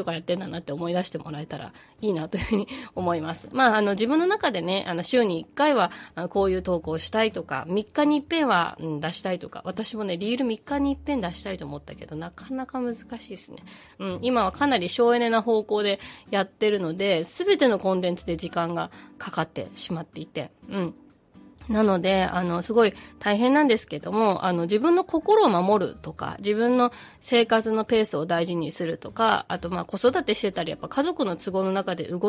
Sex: female